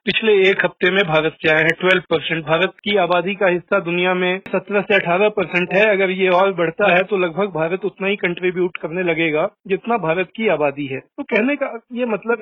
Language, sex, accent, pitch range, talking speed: Hindi, male, native, 175-210 Hz, 215 wpm